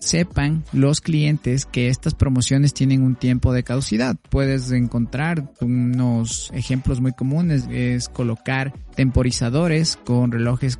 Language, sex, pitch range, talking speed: Spanish, male, 120-145 Hz, 120 wpm